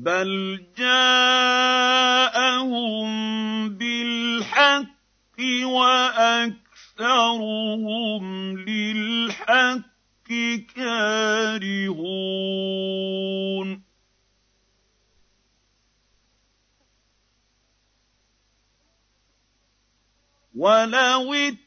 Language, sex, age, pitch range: Arabic, male, 50-69, 190-255 Hz